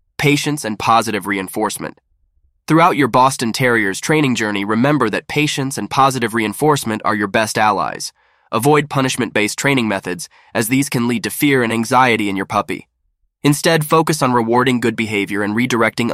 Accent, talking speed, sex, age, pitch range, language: American, 160 wpm, male, 20-39, 105-140 Hz, English